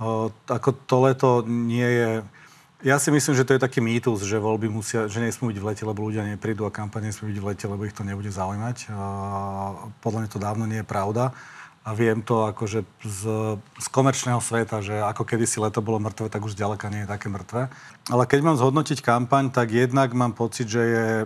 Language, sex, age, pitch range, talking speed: Slovak, male, 40-59, 110-120 Hz, 215 wpm